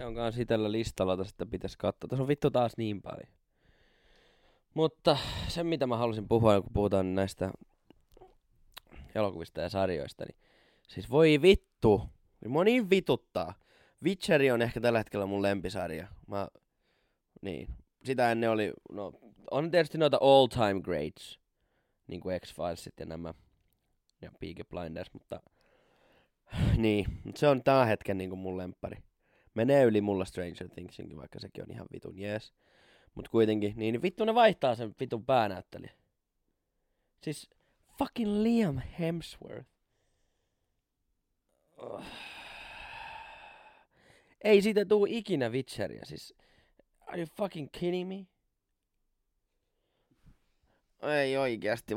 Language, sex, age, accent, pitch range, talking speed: Finnish, male, 20-39, native, 95-155 Hz, 125 wpm